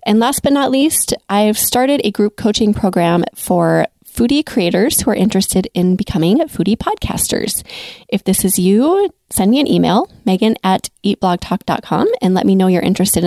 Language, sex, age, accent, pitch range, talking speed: English, female, 20-39, American, 190-240 Hz, 170 wpm